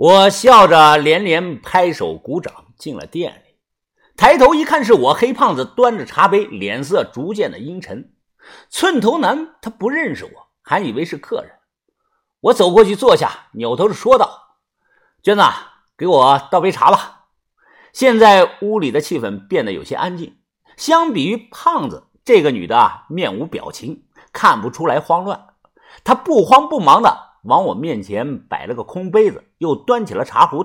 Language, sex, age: Chinese, male, 50-69